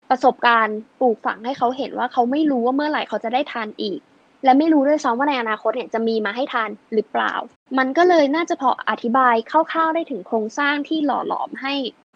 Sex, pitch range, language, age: female, 220-275 Hz, Thai, 20-39